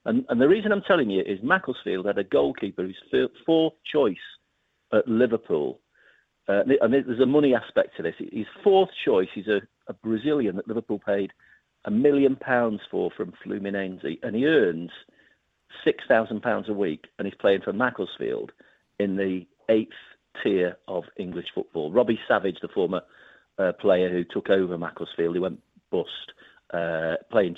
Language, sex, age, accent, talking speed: English, male, 50-69, British, 160 wpm